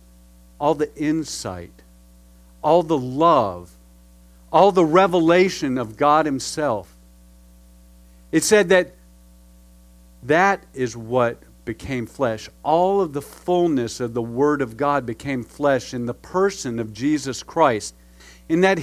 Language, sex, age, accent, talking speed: English, male, 50-69, American, 125 wpm